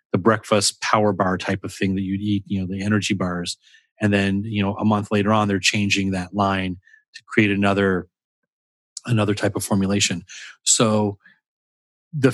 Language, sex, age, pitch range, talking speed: English, male, 30-49, 100-115 Hz, 175 wpm